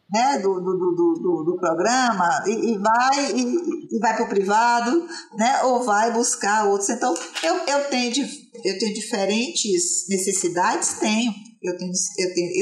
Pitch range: 195-245 Hz